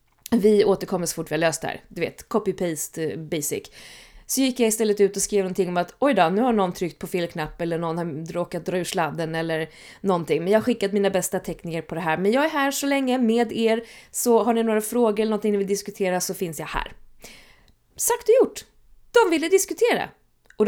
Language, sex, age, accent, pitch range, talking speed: Swedish, female, 20-39, native, 170-235 Hz, 225 wpm